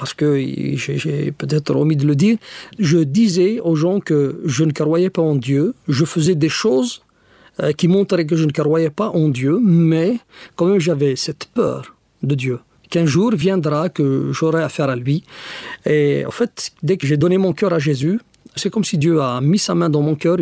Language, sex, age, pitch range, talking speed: French, male, 50-69, 150-185 Hz, 210 wpm